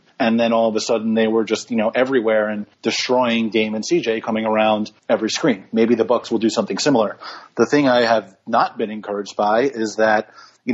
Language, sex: English, male